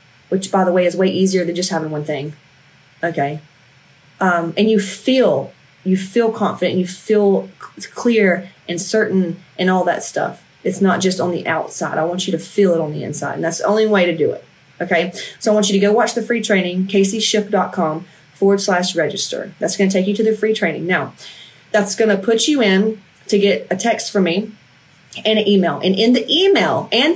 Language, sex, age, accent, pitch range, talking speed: English, female, 30-49, American, 170-205 Hz, 215 wpm